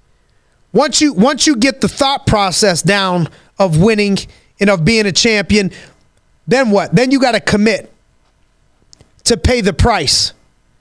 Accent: American